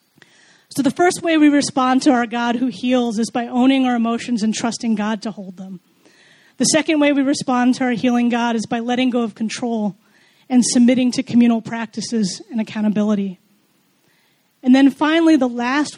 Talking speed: 185 wpm